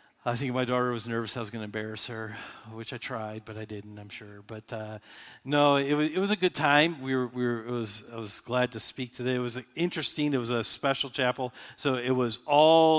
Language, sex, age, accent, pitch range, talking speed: English, male, 50-69, American, 115-145 Hz, 250 wpm